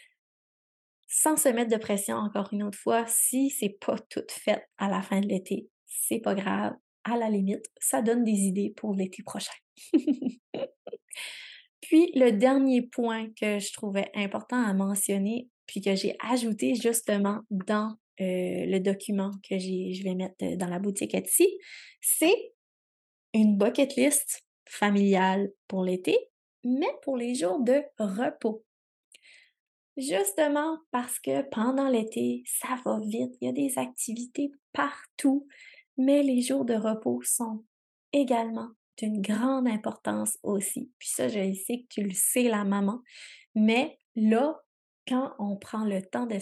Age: 20-39